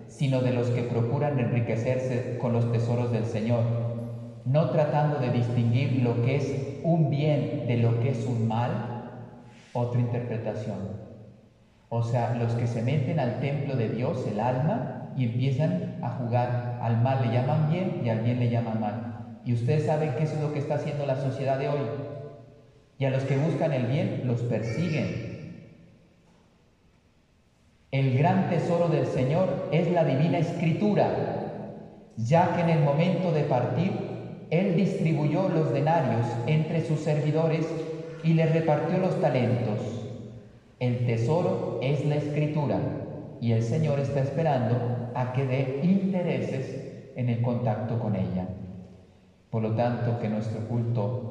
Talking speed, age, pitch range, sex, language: 150 wpm, 40-59, 115-150 Hz, male, Spanish